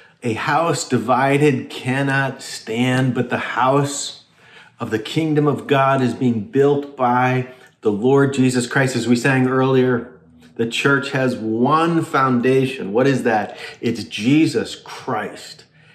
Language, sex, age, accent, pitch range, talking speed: English, male, 40-59, American, 120-145 Hz, 135 wpm